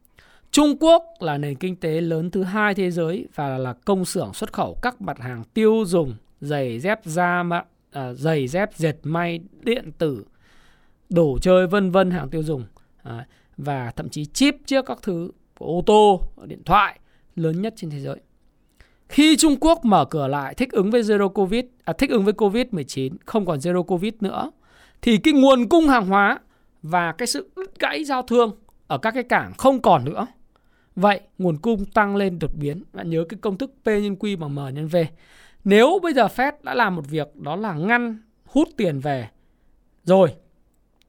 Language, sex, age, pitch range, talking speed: Vietnamese, male, 20-39, 160-235 Hz, 190 wpm